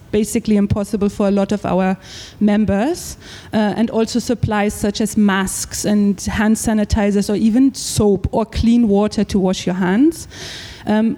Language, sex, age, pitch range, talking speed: Danish, female, 30-49, 210-255 Hz, 155 wpm